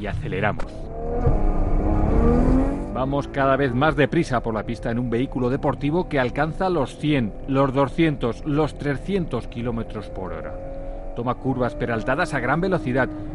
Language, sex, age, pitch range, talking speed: Spanish, male, 40-59, 105-145 Hz, 140 wpm